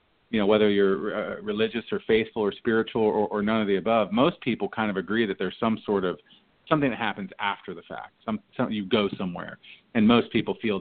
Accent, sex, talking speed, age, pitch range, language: American, male, 230 wpm, 40-59, 100-140 Hz, English